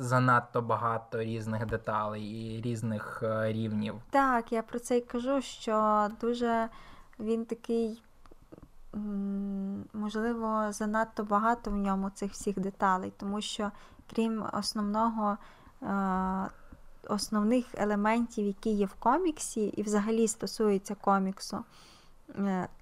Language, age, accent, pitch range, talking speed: Ukrainian, 20-39, native, 195-230 Hz, 110 wpm